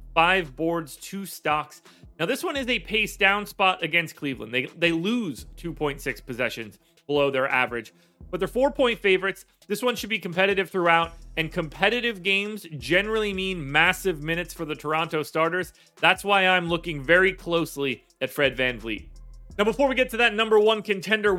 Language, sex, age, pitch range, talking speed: English, male, 30-49, 145-195 Hz, 175 wpm